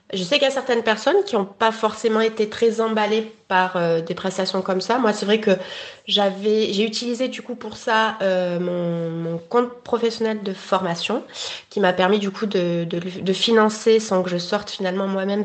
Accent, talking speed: French, 205 wpm